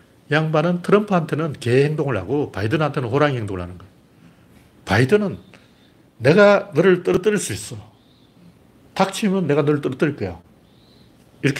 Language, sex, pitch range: Korean, male, 110-155 Hz